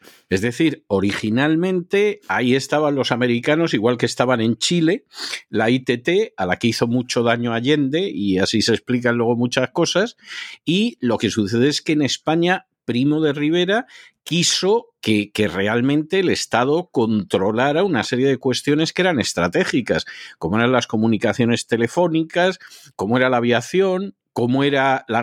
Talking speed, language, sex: 155 wpm, Spanish, male